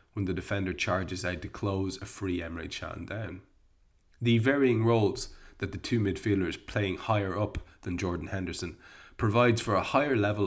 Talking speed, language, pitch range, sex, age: 170 wpm, English, 90-115 Hz, male, 30-49